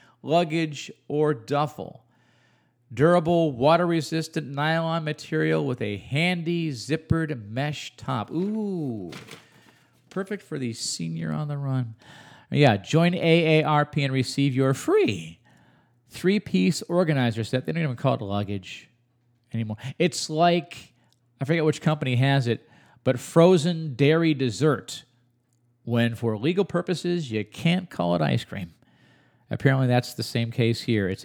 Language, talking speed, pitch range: English, 130 wpm, 120-165 Hz